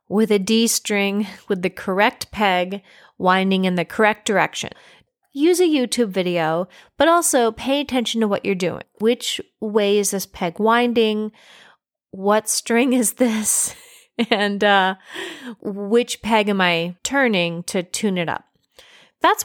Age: 30-49